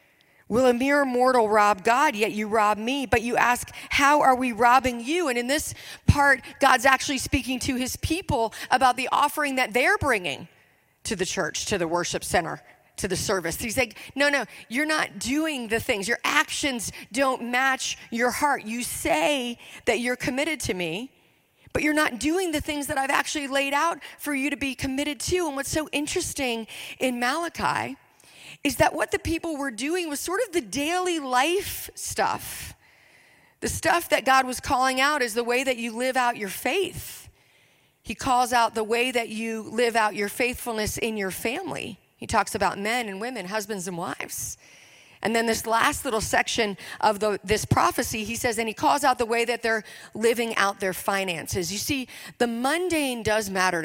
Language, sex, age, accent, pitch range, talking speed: English, female, 40-59, American, 225-285 Hz, 190 wpm